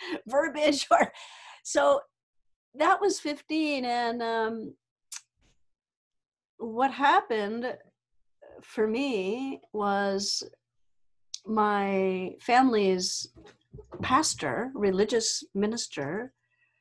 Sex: female